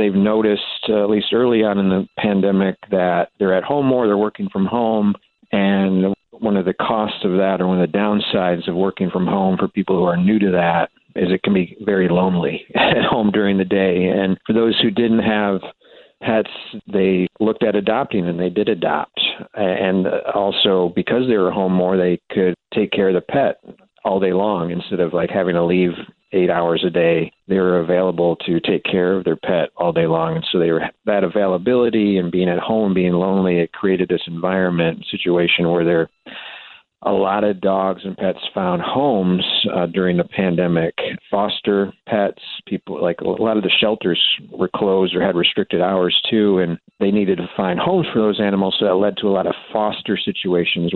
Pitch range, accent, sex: 90-105 Hz, American, male